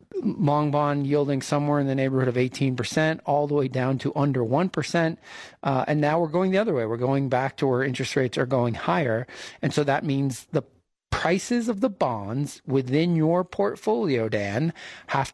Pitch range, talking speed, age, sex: 130-155 Hz, 190 wpm, 40-59, male